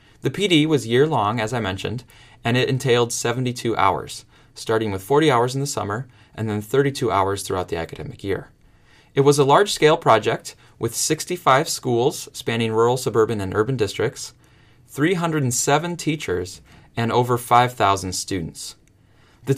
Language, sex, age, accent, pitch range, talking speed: English, male, 20-39, American, 110-140 Hz, 145 wpm